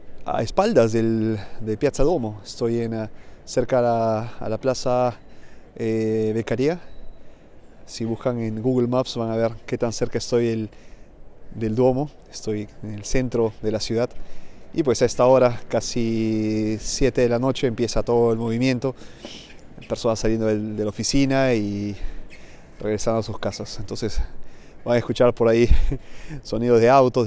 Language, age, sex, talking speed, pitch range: Spanish, 30-49, male, 155 wpm, 105-125 Hz